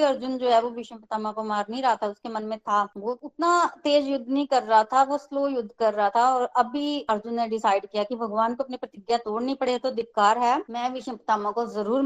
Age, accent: 20-39, native